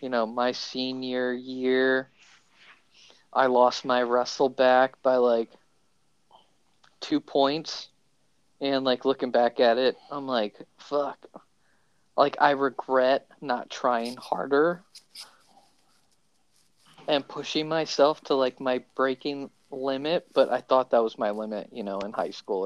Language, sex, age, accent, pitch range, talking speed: English, male, 20-39, American, 120-140 Hz, 130 wpm